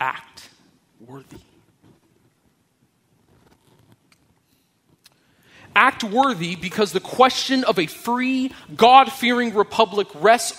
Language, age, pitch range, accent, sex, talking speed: English, 30-49, 205-250 Hz, American, male, 75 wpm